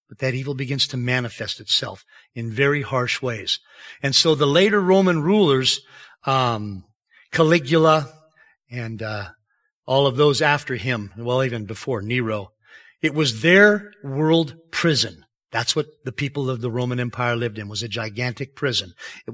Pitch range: 125-175 Hz